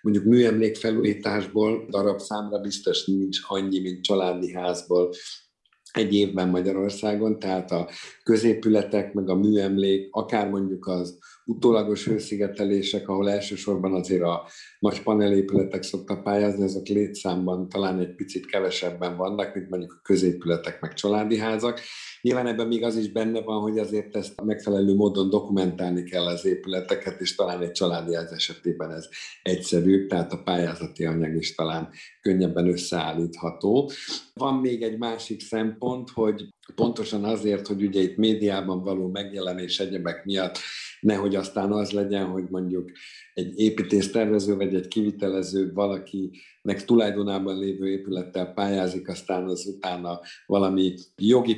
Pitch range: 90-105 Hz